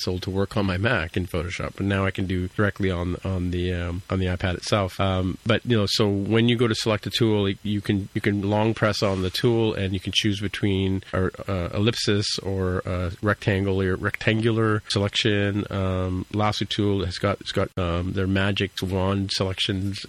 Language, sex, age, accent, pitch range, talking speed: English, male, 40-59, American, 95-105 Hz, 205 wpm